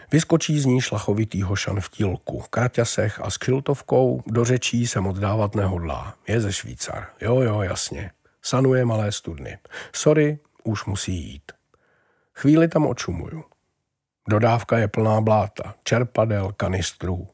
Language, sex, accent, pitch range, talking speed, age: Czech, male, native, 100-140 Hz, 135 wpm, 50-69